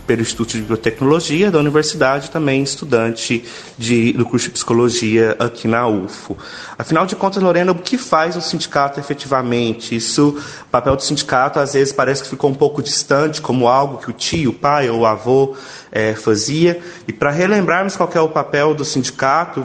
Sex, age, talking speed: male, 30-49, 185 wpm